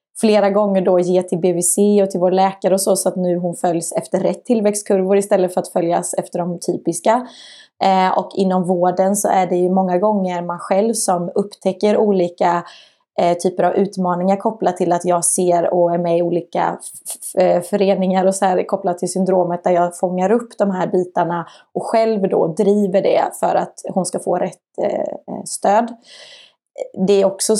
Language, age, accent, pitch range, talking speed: Swedish, 20-39, native, 180-200 Hz, 190 wpm